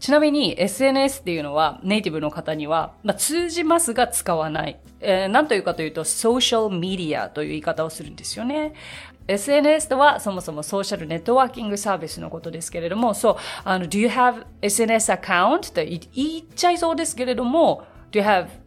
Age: 30-49